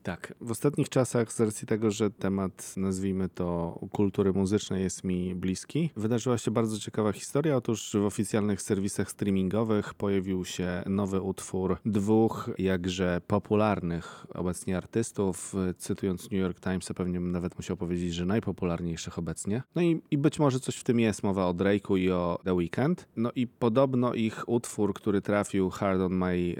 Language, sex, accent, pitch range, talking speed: Polish, male, native, 90-110 Hz, 165 wpm